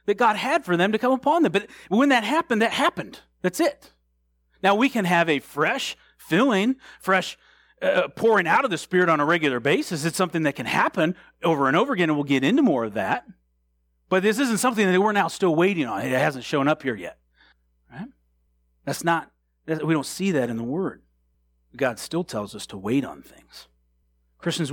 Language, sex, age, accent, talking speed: English, male, 40-59, American, 210 wpm